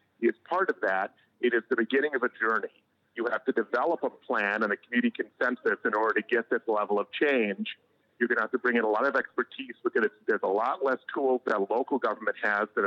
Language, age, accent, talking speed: English, 40-59, American, 245 wpm